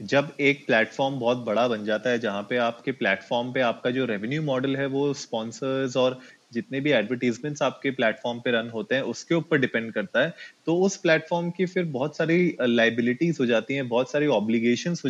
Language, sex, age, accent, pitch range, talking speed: Hindi, male, 20-39, native, 120-150 Hz, 200 wpm